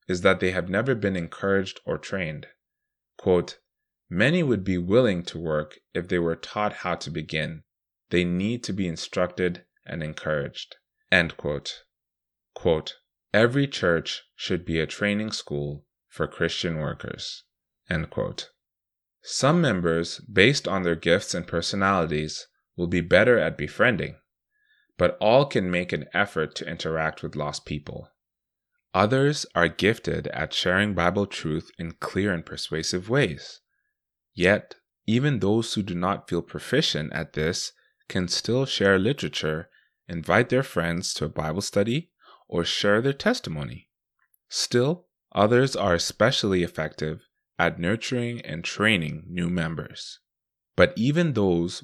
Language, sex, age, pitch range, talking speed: English, male, 20-39, 85-115 Hz, 140 wpm